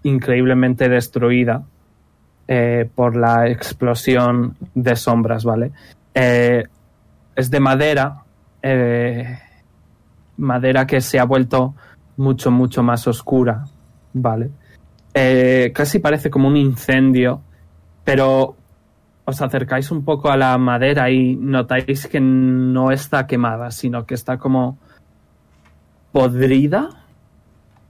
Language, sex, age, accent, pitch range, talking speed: Spanish, male, 20-39, Spanish, 120-135 Hz, 105 wpm